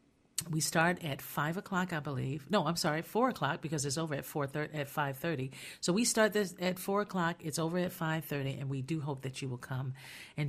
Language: English